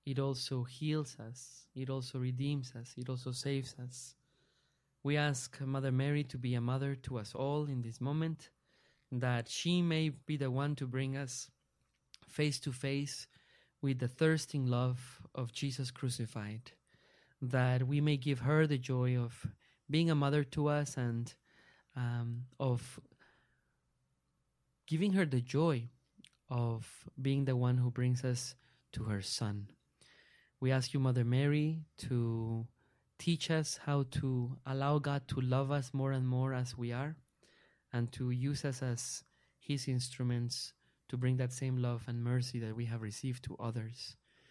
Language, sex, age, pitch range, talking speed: English, male, 20-39, 125-140 Hz, 155 wpm